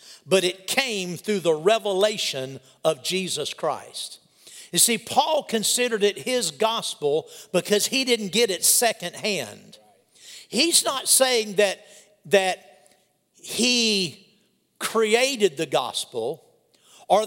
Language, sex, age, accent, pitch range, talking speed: English, male, 50-69, American, 175-225 Hz, 110 wpm